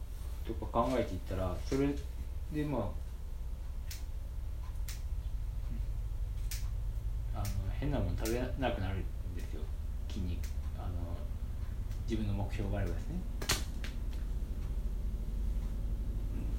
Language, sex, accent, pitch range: Japanese, male, native, 100-115 Hz